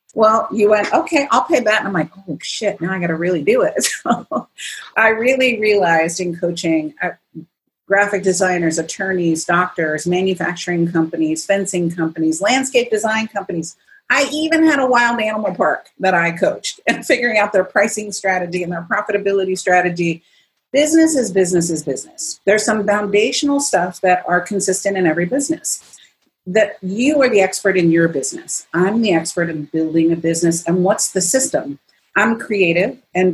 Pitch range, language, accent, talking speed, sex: 170-225 Hz, English, American, 165 wpm, female